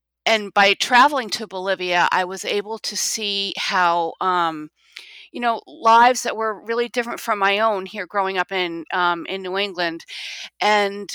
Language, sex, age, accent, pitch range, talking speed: English, female, 40-59, American, 175-215 Hz, 165 wpm